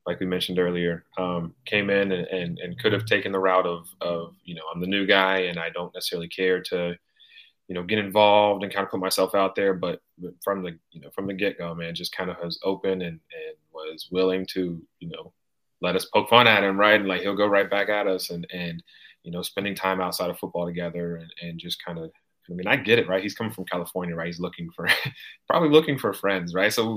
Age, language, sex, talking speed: 30-49, English, male, 250 wpm